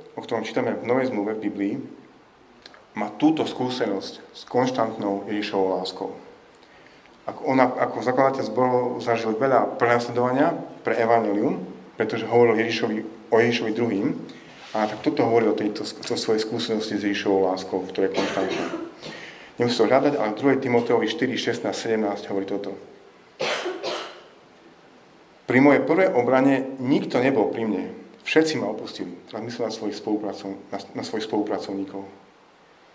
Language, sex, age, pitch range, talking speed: Slovak, male, 40-59, 100-125 Hz, 135 wpm